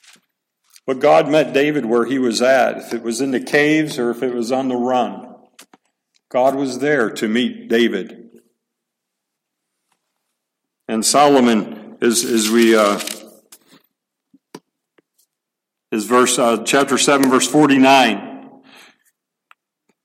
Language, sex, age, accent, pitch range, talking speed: English, male, 50-69, American, 130-175 Hz, 115 wpm